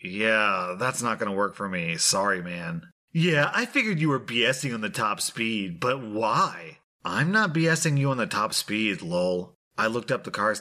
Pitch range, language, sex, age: 115-160 Hz, English, male, 30-49